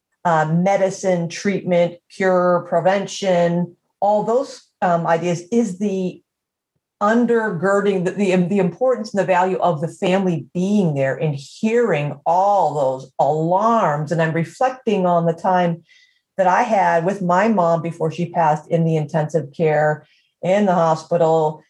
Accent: American